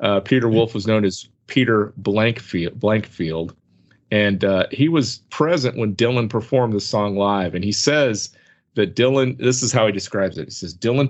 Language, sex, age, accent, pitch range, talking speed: English, male, 40-59, American, 100-125 Hz, 185 wpm